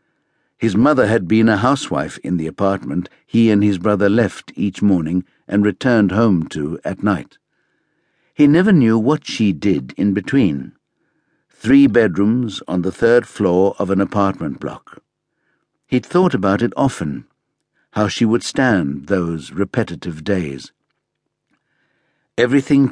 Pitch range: 95-125 Hz